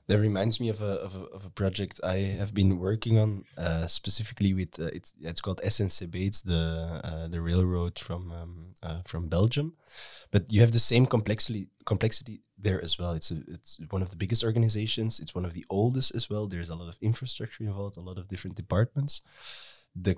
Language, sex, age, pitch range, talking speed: English, male, 20-39, 90-115 Hz, 210 wpm